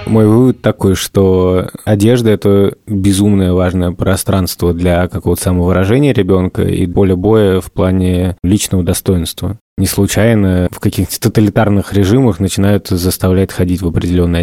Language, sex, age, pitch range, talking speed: Russian, male, 20-39, 90-105 Hz, 130 wpm